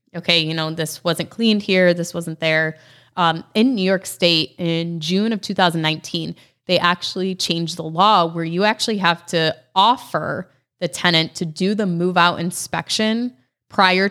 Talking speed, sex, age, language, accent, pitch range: 165 wpm, female, 20-39, English, American, 160-190 Hz